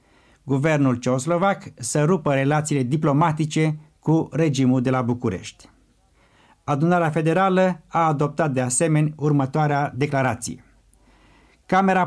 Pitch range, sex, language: 140-175 Hz, male, Romanian